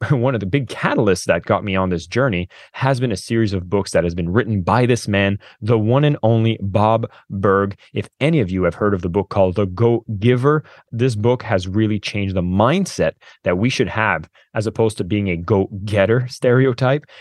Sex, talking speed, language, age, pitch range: male, 215 wpm, English, 20-39, 95-120 Hz